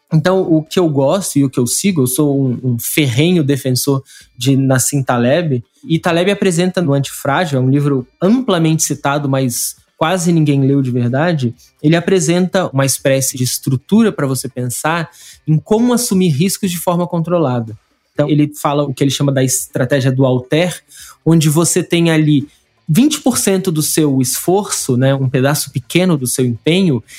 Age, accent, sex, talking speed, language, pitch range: 20-39, Brazilian, male, 170 wpm, Portuguese, 135-185 Hz